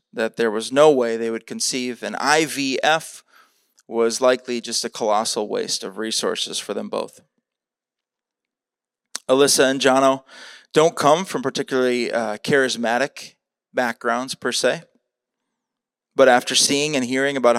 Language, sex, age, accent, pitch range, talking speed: English, male, 30-49, American, 120-145 Hz, 135 wpm